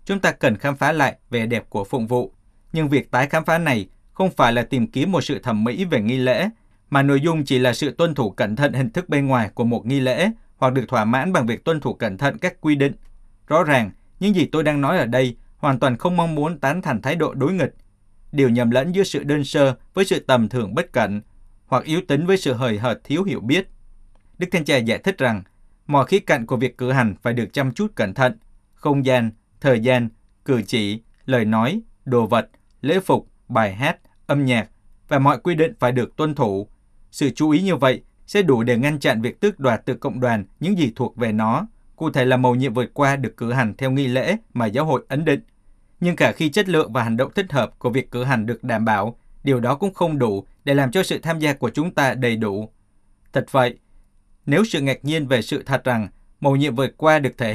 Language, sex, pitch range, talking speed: Vietnamese, male, 115-150 Hz, 245 wpm